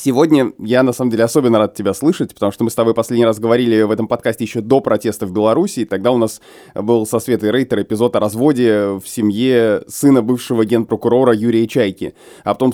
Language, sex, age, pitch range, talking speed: Russian, male, 20-39, 110-130 Hz, 205 wpm